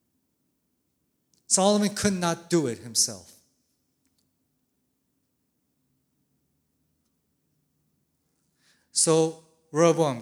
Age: 30-49